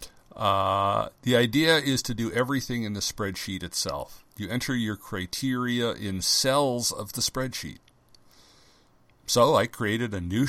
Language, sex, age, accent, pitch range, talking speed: English, male, 50-69, American, 95-110 Hz, 145 wpm